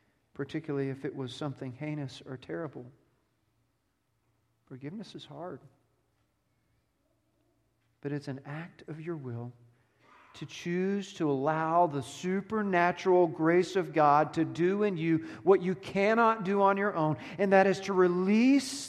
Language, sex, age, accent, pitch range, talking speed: English, male, 40-59, American, 120-190 Hz, 135 wpm